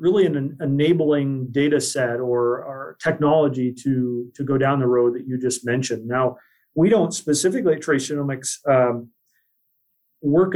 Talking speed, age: 155 wpm, 40-59